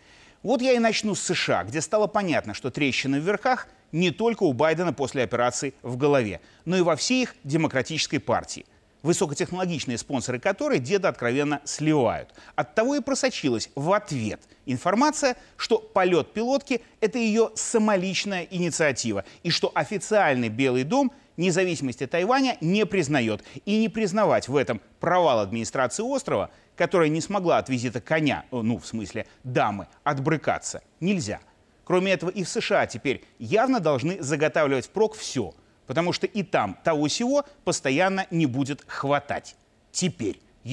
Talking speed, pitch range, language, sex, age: 145 wpm, 135-210 Hz, Russian, male, 30-49